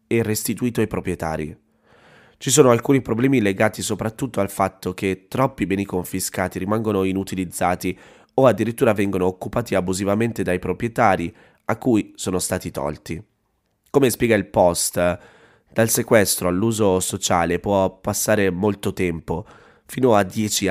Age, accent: 30-49, native